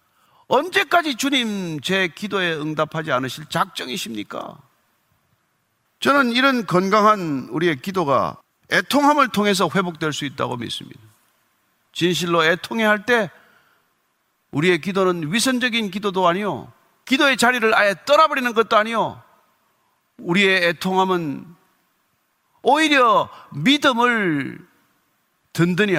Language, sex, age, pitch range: Korean, male, 40-59, 175-255 Hz